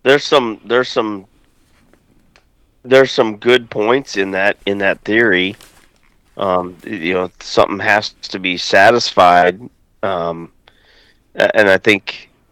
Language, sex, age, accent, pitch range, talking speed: English, male, 40-59, American, 95-120 Hz, 120 wpm